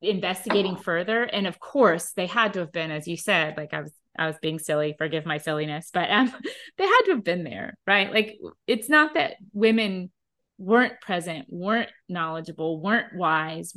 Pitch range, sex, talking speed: 175-215 Hz, female, 185 wpm